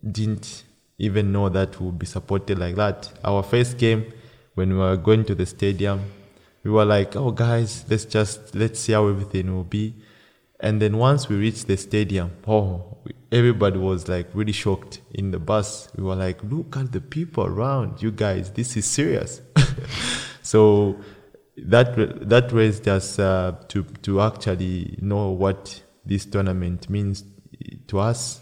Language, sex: English, male